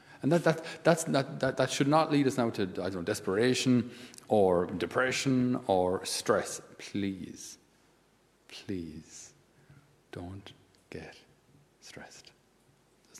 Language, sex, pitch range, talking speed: English, male, 105-135 Hz, 125 wpm